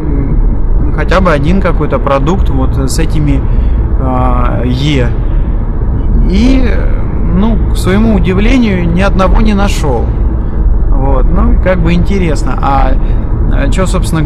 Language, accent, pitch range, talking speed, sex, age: Russian, native, 105-125 Hz, 115 wpm, male, 20-39